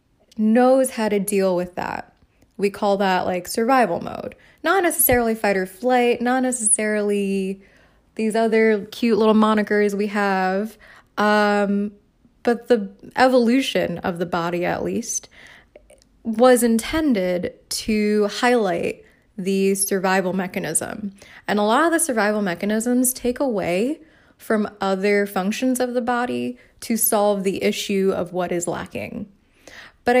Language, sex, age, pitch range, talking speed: English, female, 20-39, 190-240 Hz, 130 wpm